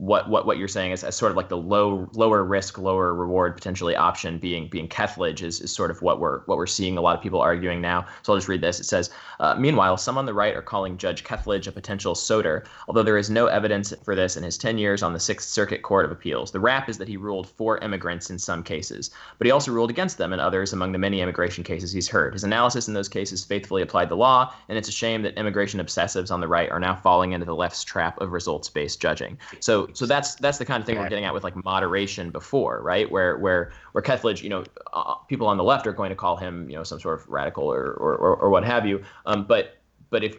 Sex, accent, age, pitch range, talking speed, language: male, American, 20-39, 90-110 Hz, 265 wpm, English